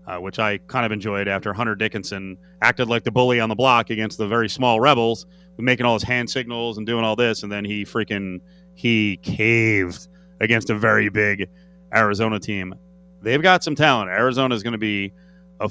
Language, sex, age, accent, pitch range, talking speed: English, male, 30-49, American, 115-180 Hz, 200 wpm